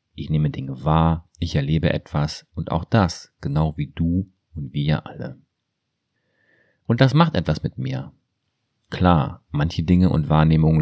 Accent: German